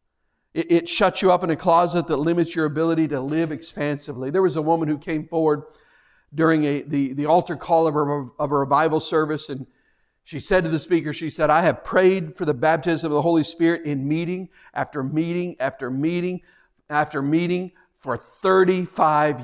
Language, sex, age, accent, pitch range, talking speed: English, male, 50-69, American, 160-200 Hz, 190 wpm